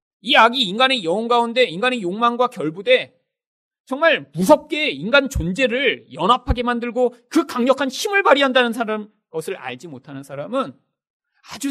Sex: male